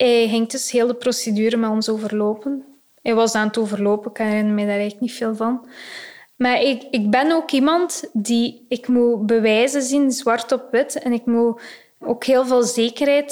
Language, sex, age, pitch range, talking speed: Dutch, female, 20-39, 225-265 Hz, 195 wpm